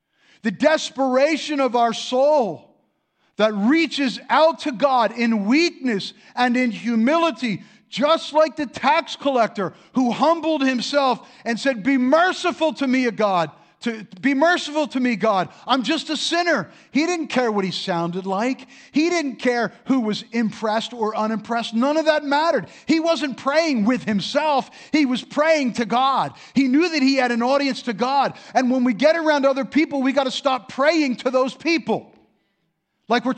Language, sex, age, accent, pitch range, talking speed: English, male, 50-69, American, 210-285 Hz, 175 wpm